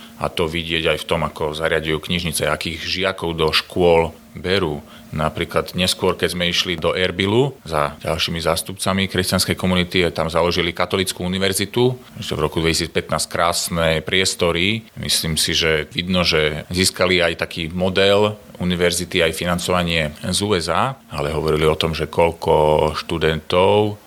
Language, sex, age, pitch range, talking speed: Slovak, male, 30-49, 80-95 Hz, 140 wpm